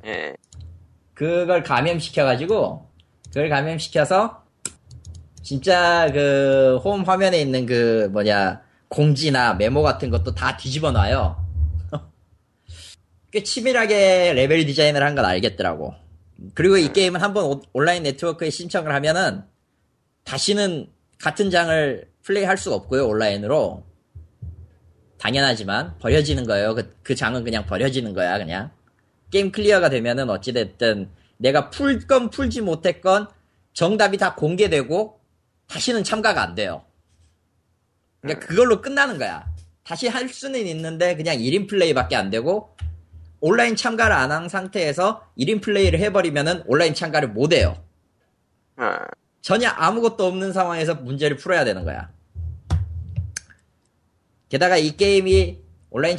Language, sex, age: Korean, male, 20-39